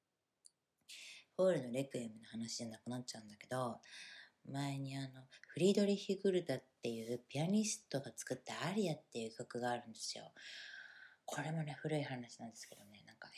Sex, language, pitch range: female, Japanese, 120-155 Hz